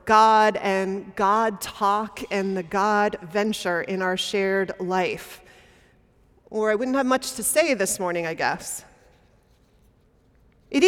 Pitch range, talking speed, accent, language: 200-275 Hz, 130 wpm, American, English